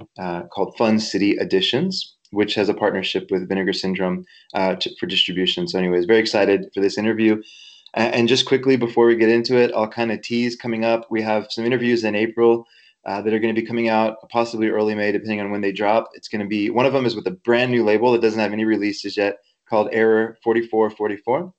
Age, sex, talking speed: 20-39, male, 225 wpm